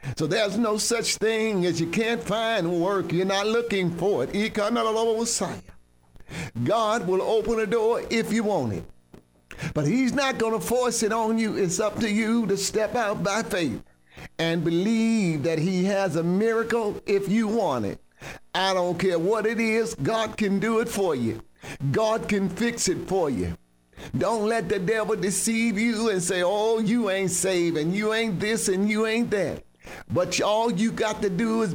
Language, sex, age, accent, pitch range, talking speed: English, male, 50-69, American, 170-220 Hz, 185 wpm